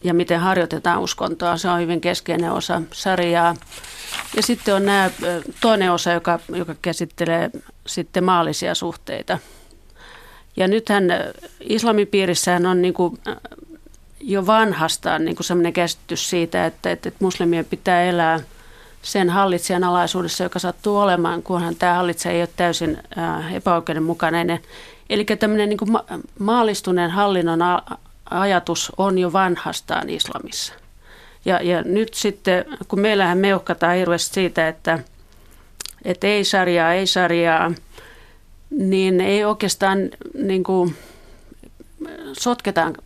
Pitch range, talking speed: 170-195 Hz, 115 wpm